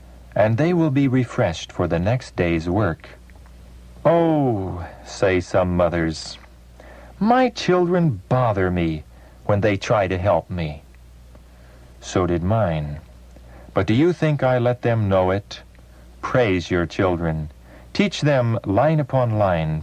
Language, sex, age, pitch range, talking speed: English, male, 50-69, 65-110 Hz, 135 wpm